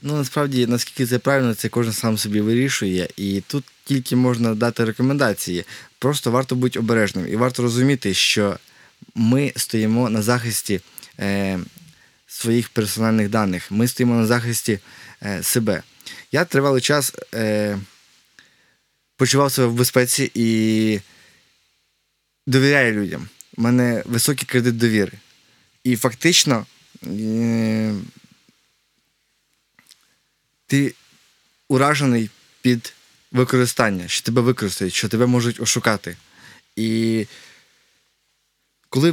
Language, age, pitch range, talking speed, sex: Ukrainian, 20-39, 110-130 Hz, 105 wpm, male